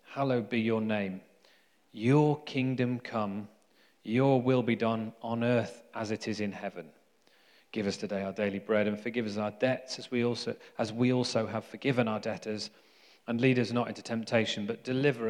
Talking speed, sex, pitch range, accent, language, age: 175 wpm, male, 110-135 Hz, British, English, 30-49